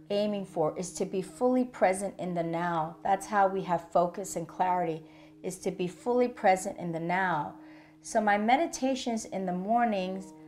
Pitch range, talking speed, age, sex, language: 155-195 Hz, 180 wpm, 40-59, female, English